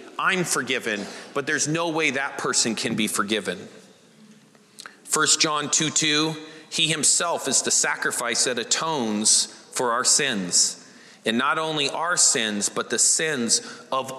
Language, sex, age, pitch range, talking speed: English, male, 40-59, 150-185 Hz, 145 wpm